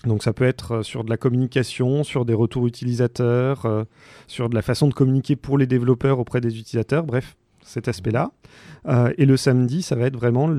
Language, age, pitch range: French, 40-59, 110-125 Hz